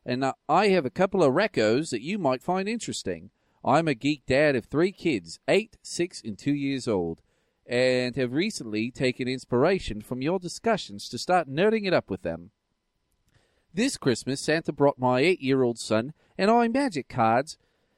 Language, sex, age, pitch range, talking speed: English, male, 40-59, 125-185 Hz, 170 wpm